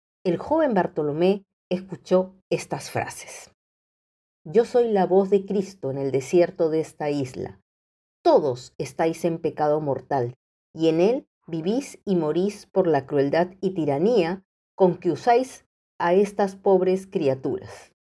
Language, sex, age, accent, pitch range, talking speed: Spanish, female, 50-69, American, 150-190 Hz, 135 wpm